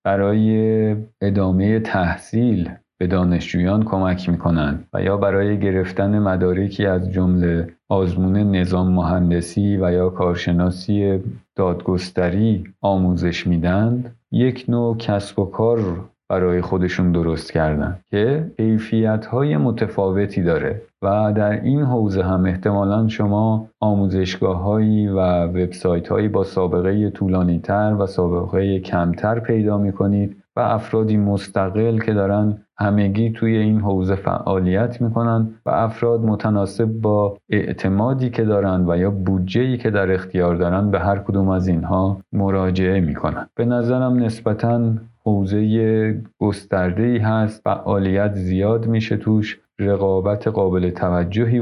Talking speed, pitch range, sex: 120 wpm, 95-110 Hz, male